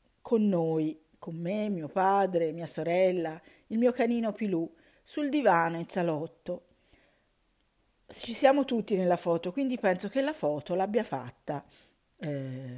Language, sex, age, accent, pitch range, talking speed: Italian, female, 50-69, native, 155-225 Hz, 135 wpm